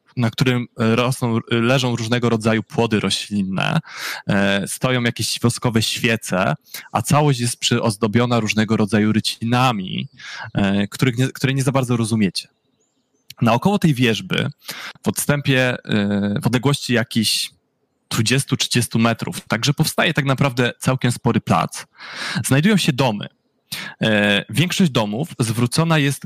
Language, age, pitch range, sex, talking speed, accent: Polish, 20-39, 115-140 Hz, male, 115 wpm, native